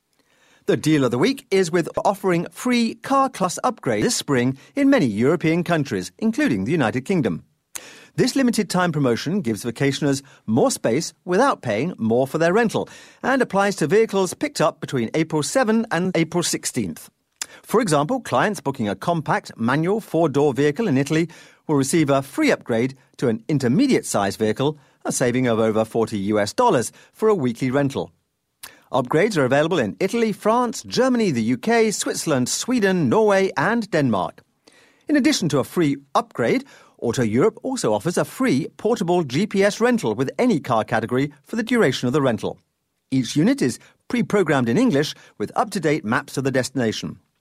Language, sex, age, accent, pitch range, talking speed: English, male, 40-59, British, 130-215 Hz, 165 wpm